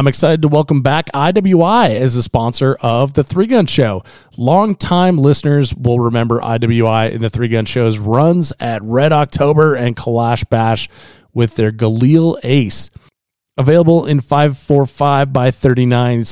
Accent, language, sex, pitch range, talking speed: American, English, male, 115-140 Hz, 160 wpm